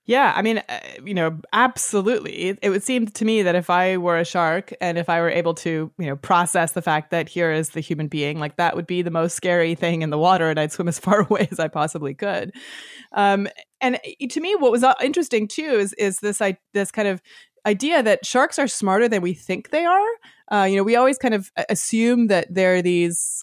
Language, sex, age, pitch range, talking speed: English, female, 30-49, 170-215 Hz, 245 wpm